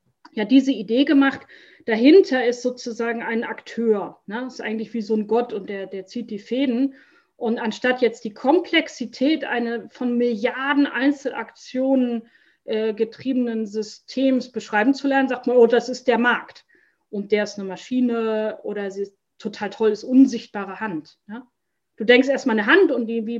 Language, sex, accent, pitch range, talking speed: German, female, German, 215-260 Hz, 170 wpm